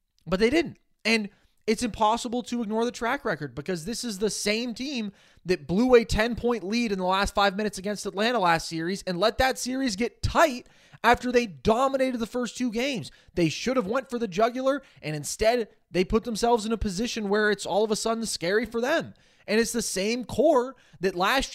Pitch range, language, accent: 190-245 Hz, English, American